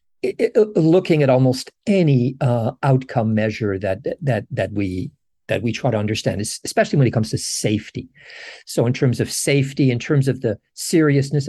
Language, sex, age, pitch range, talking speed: English, male, 50-69, 125-170 Hz, 165 wpm